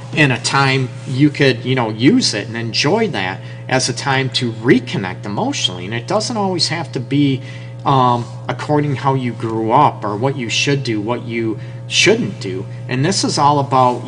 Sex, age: male, 40-59